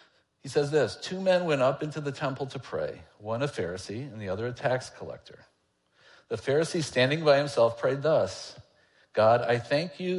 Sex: male